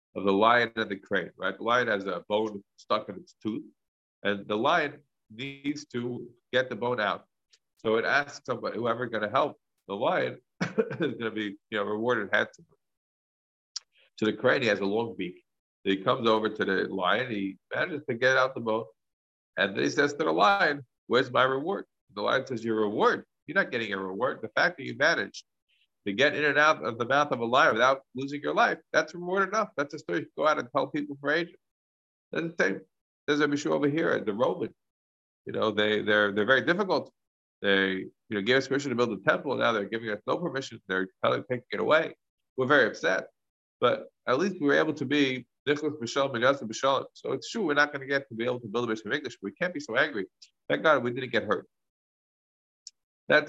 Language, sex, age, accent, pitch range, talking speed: English, male, 50-69, American, 105-140 Hz, 225 wpm